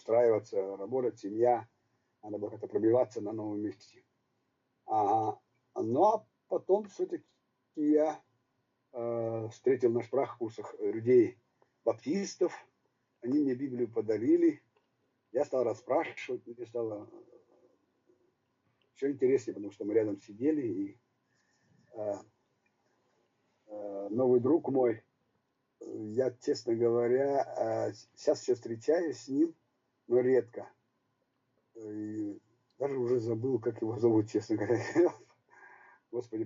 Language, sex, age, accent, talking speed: Russian, male, 50-69, native, 105 wpm